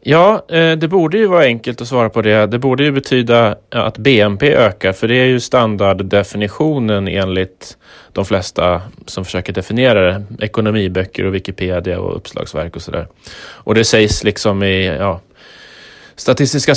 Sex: male